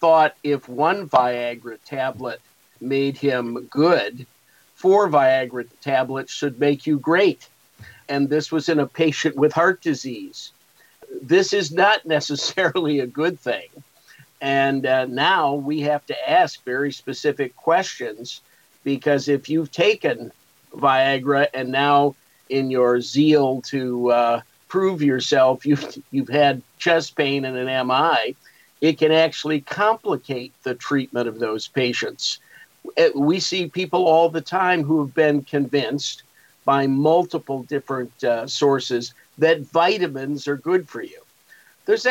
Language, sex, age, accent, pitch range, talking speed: English, male, 50-69, American, 135-165 Hz, 135 wpm